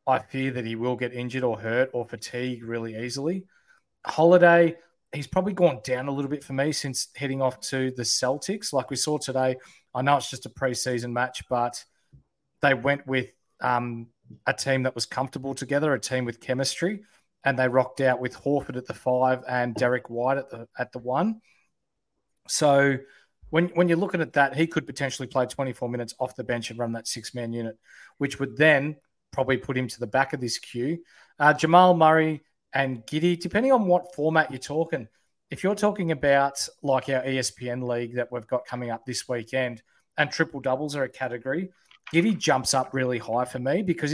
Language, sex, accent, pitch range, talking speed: English, male, Australian, 125-145 Hz, 200 wpm